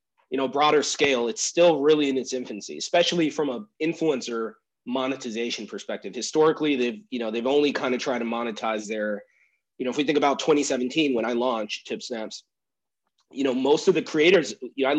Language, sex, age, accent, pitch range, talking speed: English, male, 30-49, American, 120-155 Hz, 195 wpm